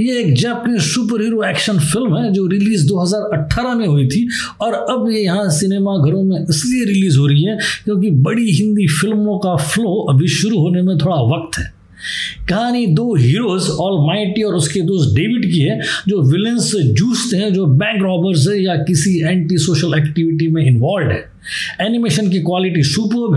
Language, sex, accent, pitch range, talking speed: Hindi, male, native, 155-215 Hz, 175 wpm